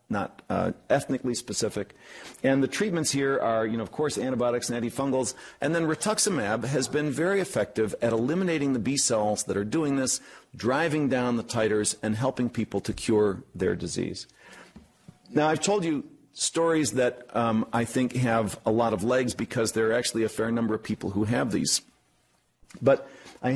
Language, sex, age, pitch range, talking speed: English, male, 50-69, 115-155 Hz, 180 wpm